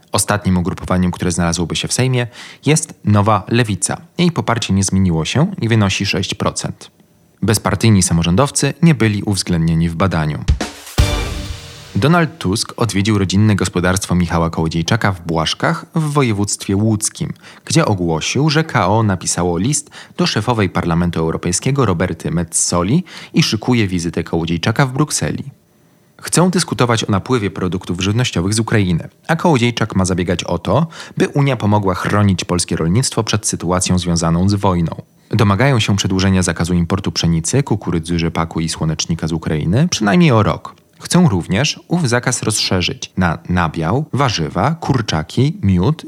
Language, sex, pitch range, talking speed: Polish, male, 90-130 Hz, 135 wpm